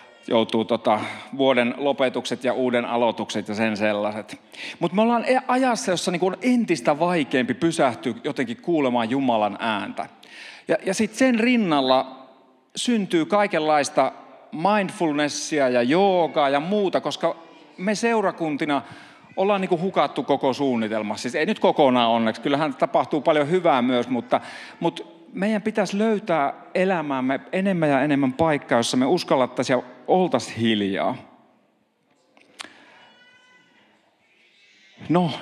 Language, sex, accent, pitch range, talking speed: Finnish, male, native, 125-185 Hz, 115 wpm